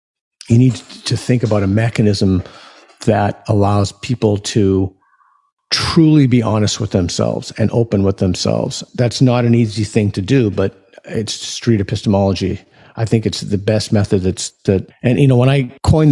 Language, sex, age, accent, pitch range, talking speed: English, male, 50-69, American, 100-125 Hz, 170 wpm